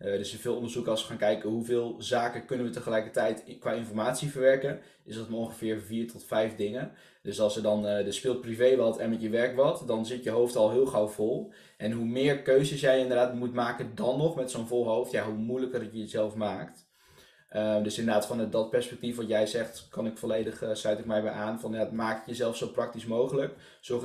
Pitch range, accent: 110-130 Hz, Dutch